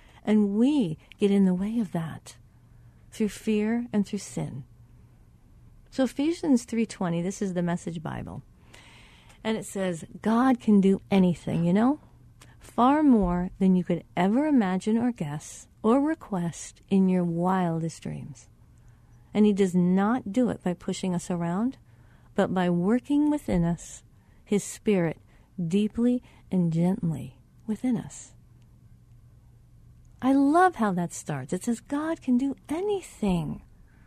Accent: American